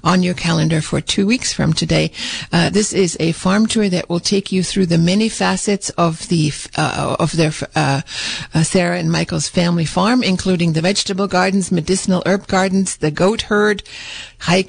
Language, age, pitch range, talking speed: English, 60-79, 170-205 Hz, 185 wpm